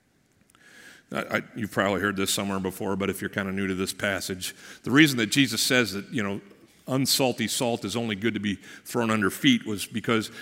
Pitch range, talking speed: 105-145 Hz, 205 wpm